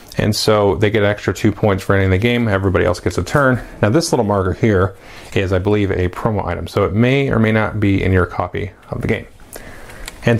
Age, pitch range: 30-49, 100-120 Hz